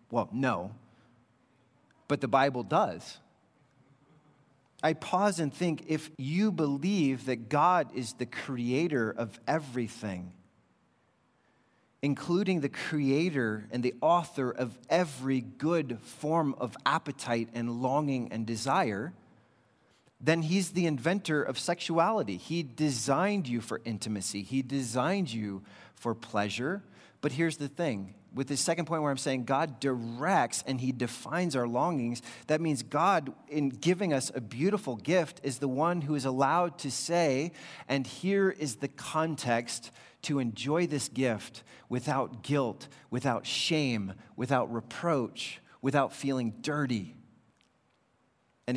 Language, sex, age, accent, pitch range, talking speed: English, male, 30-49, American, 120-155 Hz, 130 wpm